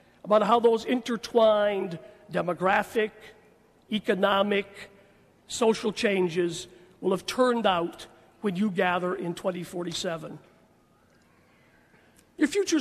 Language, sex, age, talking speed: English, male, 50-69, 90 wpm